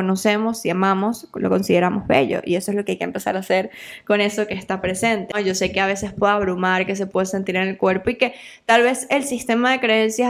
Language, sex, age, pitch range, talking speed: Spanish, female, 10-29, 190-220 Hz, 250 wpm